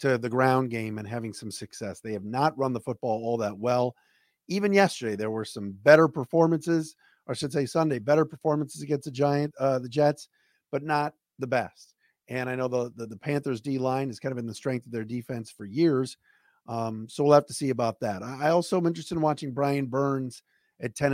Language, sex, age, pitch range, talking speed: English, male, 40-59, 115-150 Hz, 225 wpm